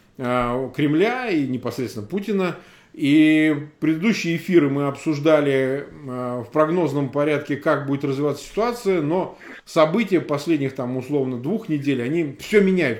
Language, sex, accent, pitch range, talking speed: Russian, male, native, 140-190 Hz, 120 wpm